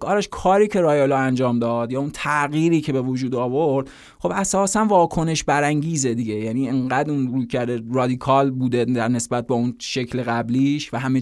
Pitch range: 130-155 Hz